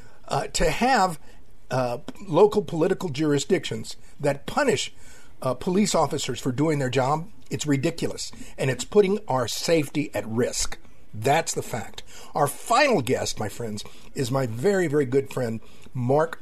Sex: male